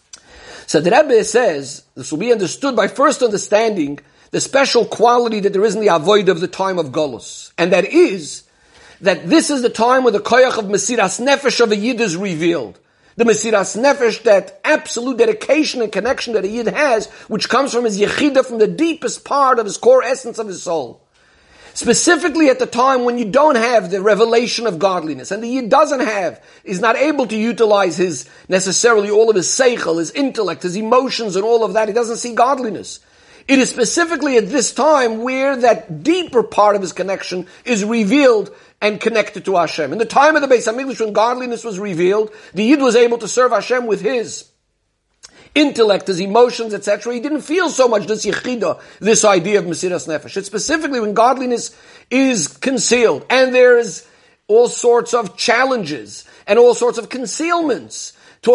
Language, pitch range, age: English, 205-260 Hz, 50-69